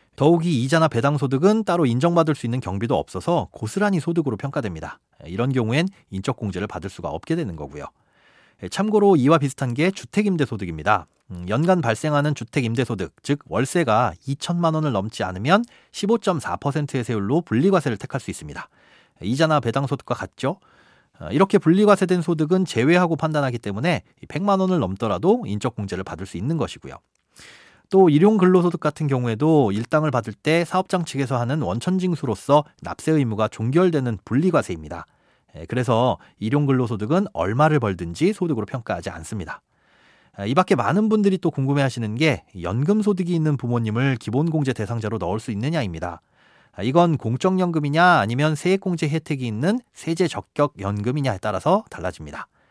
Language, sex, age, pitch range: Korean, male, 40-59, 110-170 Hz